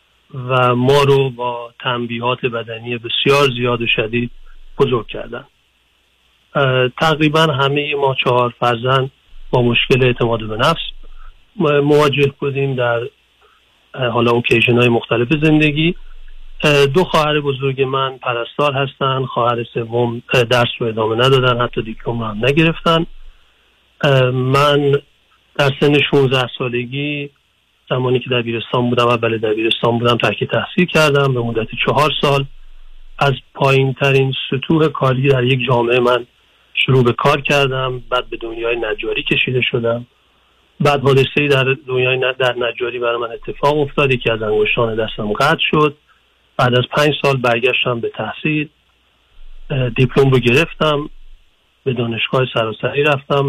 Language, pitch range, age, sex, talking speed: Persian, 120-140 Hz, 40-59, male, 130 wpm